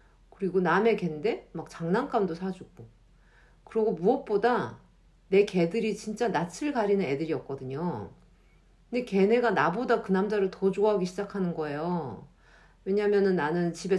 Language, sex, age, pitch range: Korean, female, 50-69, 160-205 Hz